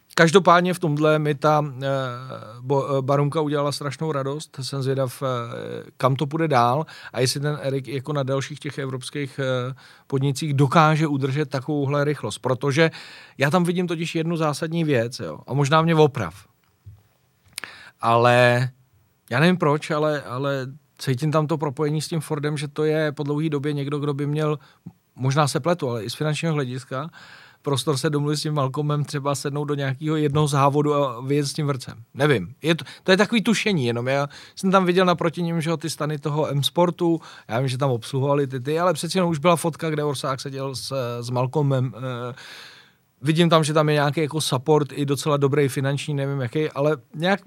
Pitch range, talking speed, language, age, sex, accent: 135-155 Hz, 180 wpm, Czech, 40-59, male, native